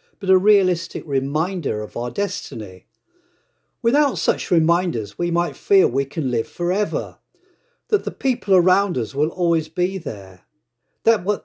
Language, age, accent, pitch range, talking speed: English, 50-69, British, 130-190 Hz, 140 wpm